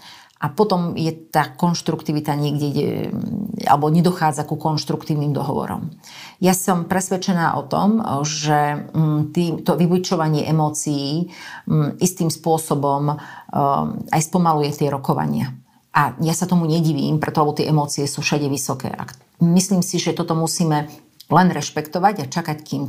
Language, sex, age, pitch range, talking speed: Slovak, female, 40-59, 145-165 Hz, 125 wpm